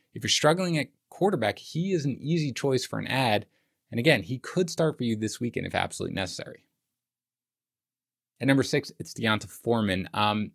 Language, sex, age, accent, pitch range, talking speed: English, male, 20-39, American, 105-150 Hz, 180 wpm